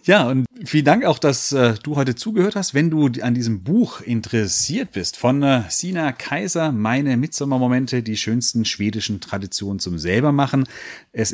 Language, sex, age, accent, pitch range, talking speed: German, male, 40-59, German, 110-145 Hz, 165 wpm